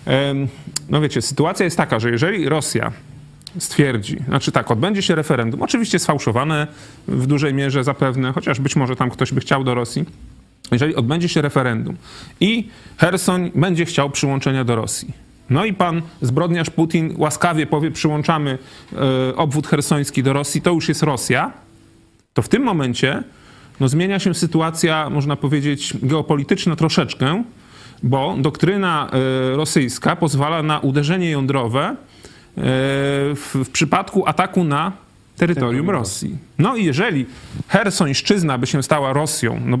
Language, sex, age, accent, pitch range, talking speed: Polish, male, 30-49, native, 135-170 Hz, 135 wpm